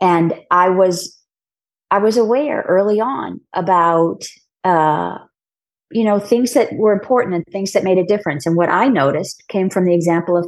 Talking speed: 180 wpm